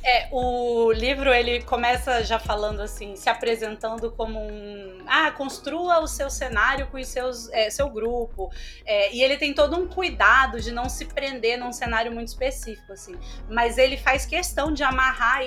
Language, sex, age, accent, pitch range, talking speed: Portuguese, female, 20-39, Brazilian, 220-265 Hz, 175 wpm